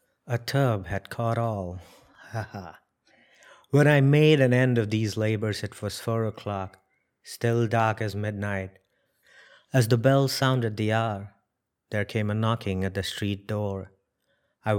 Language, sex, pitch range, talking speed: English, male, 100-115 Hz, 155 wpm